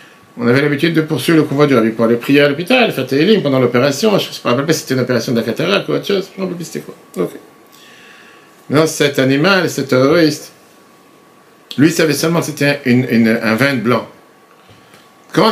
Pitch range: 130-190 Hz